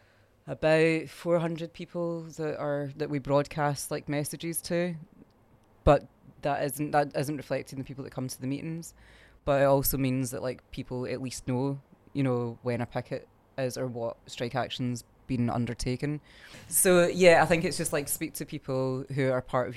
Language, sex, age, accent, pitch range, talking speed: English, female, 20-39, British, 125-140 Hz, 185 wpm